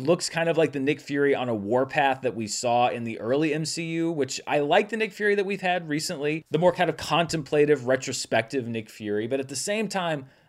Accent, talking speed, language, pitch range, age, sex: American, 230 wpm, English, 120-170 Hz, 30-49, male